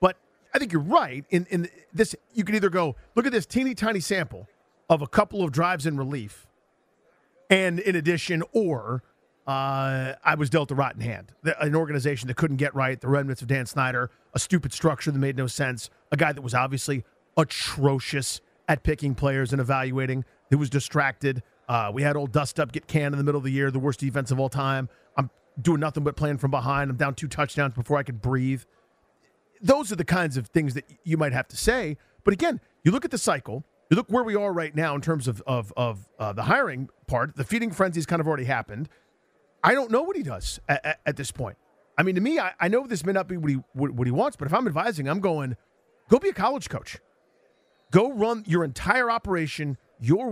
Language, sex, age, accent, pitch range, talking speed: English, male, 40-59, American, 130-170 Hz, 230 wpm